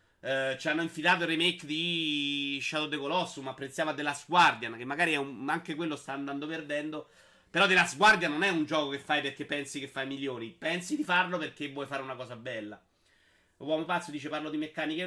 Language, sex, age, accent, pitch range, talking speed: Italian, male, 30-49, native, 140-180 Hz, 205 wpm